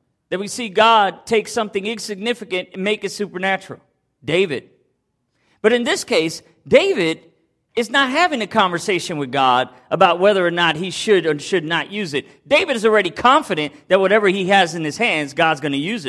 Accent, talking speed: American, 185 wpm